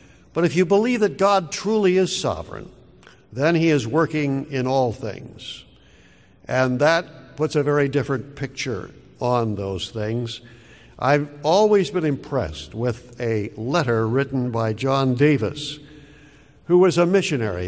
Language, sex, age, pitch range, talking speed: English, male, 60-79, 115-155 Hz, 140 wpm